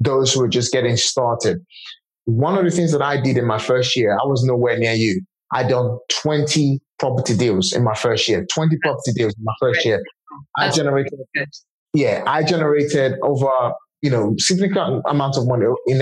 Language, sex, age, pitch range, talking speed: English, male, 30-49, 125-155 Hz, 190 wpm